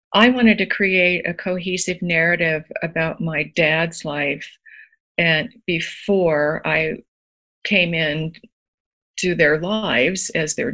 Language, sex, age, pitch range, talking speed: English, female, 50-69, 160-200 Hz, 110 wpm